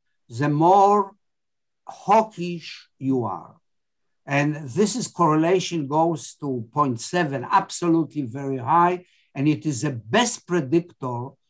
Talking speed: 110 wpm